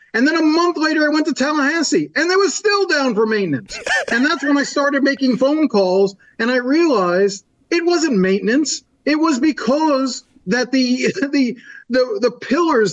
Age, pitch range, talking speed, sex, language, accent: 40-59, 215-285 Hz, 180 wpm, male, English, American